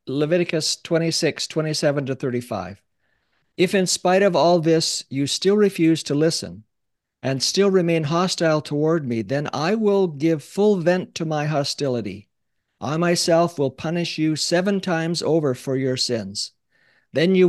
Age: 50-69